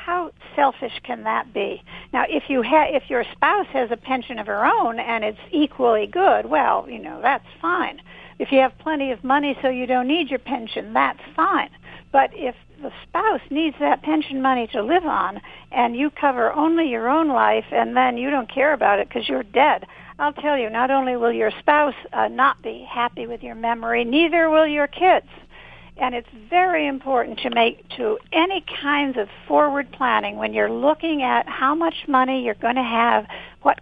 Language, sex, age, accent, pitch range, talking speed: English, female, 60-79, American, 235-300 Hz, 200 wpm